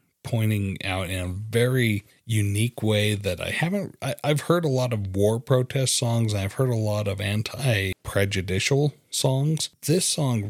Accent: American